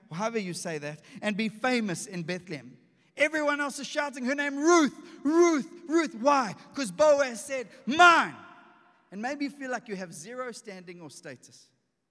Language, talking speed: English, 170 wpm